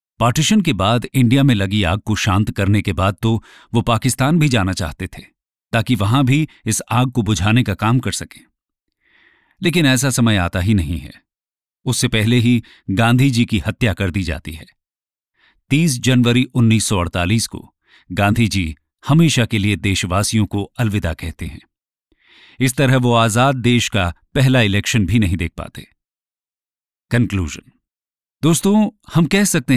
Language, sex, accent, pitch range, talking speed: English, male, Indian, 100-130 Hz, 135 wpm